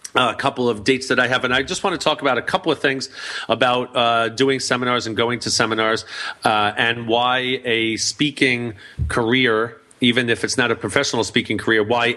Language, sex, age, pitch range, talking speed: English, male, 40-59, 110-135 Hz, 205 wpm